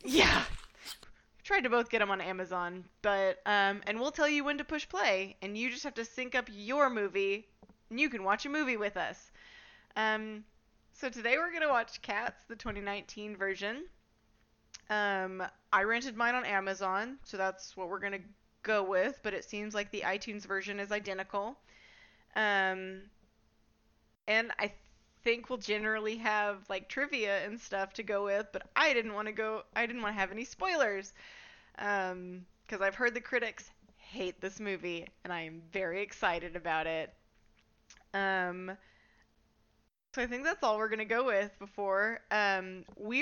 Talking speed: 175 wpm